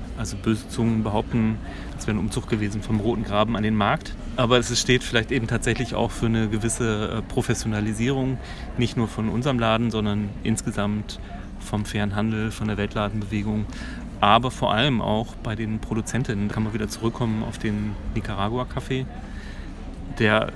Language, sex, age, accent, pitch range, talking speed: German, male, 30-49, German, 105-120 Hz, 155 wpm